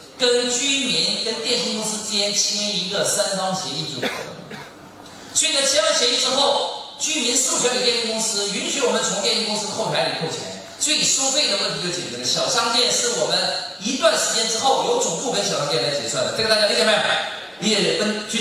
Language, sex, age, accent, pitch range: Chinese, male, 40-59, native, 160-260 Hz